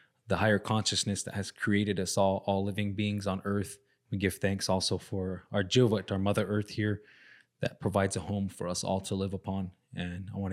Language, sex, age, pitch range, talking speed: English, male, 20-39, 95-110 Hz, 210 wpm